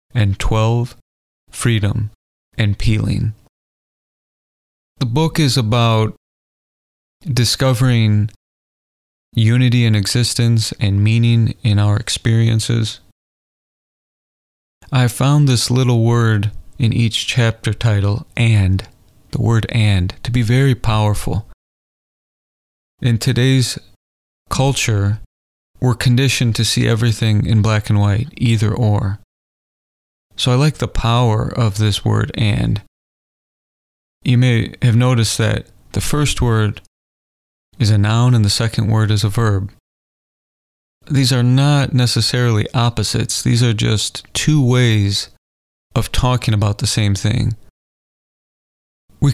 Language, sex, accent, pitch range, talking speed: English, male, American, 100-120 Hz, 115 wpm